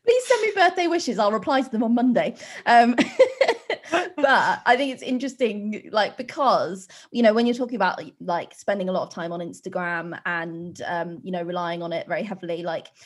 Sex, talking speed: female, 200 wpm